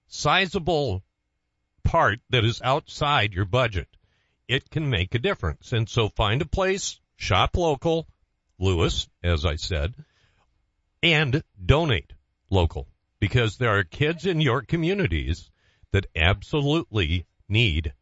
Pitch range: 95-145 Hz